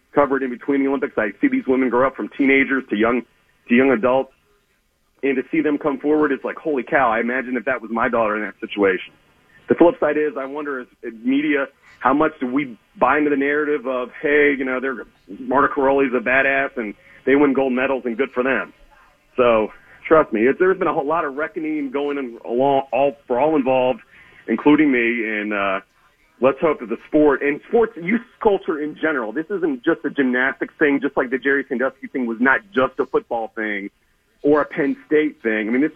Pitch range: 130-170 Hz